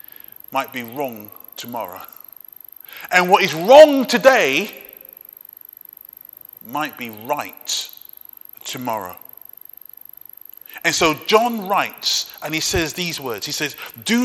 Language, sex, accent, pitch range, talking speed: English, male, British, 170-230 Hz, 105 wpm